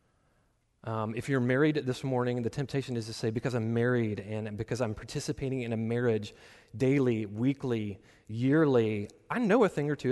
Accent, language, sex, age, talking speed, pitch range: American, English, male, 30-49, 170 wpm, 110-140 Hz